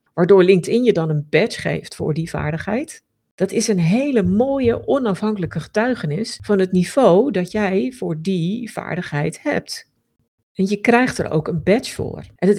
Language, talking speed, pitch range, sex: Dutch, 170 wpm, 170-215 Hz, female